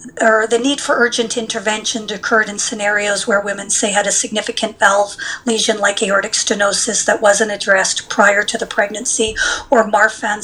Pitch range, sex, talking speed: 205-240 Hz, female, 165 wpm